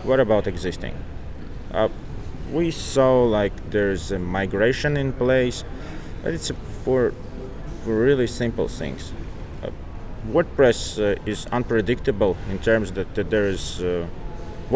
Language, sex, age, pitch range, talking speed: Danish, male, 30-49, 90-125 Hz, 125 wpm